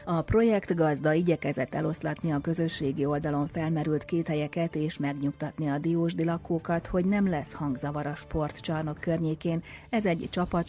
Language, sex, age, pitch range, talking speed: Hungarian, female, 30-49, 140-170 Hz, 145 wpm